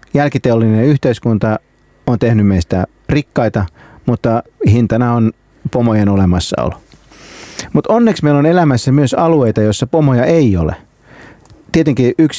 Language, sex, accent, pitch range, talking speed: Finnish, male, native, 110-145 Hz, 110 wpm